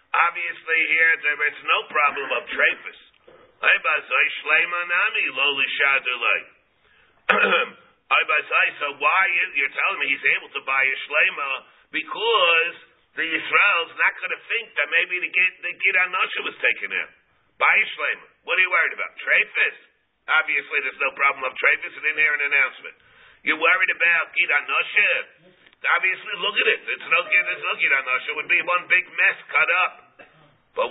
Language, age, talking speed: English, 50-69, 150 wpm